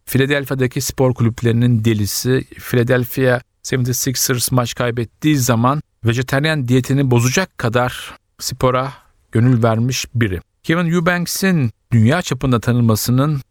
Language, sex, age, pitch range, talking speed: Turkish, male, 50-69, 110-130 Hz, 100 wpm